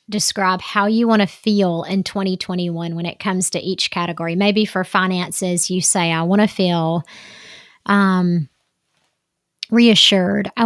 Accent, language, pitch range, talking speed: American, English, 180-210 Hz, 145 wpm